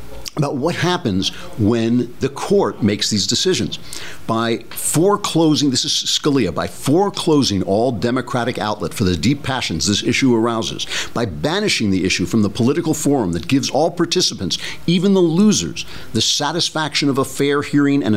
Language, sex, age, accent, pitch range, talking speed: English, male, 60-79, American, 105-145 Hz, 160 wpm